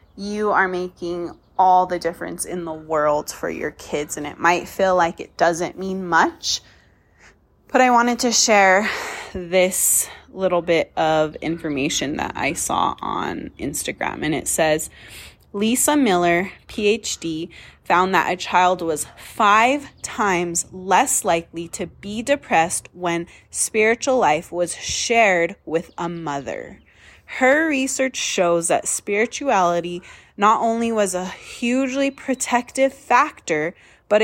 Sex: female